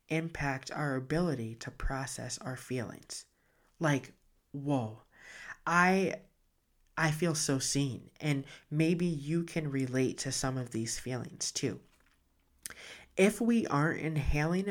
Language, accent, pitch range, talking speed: English, American, 130-160 Hz, 120 wpm